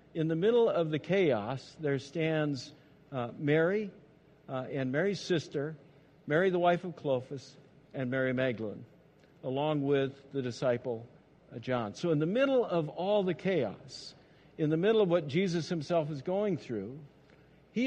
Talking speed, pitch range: 160 wpm, 130-165 Hz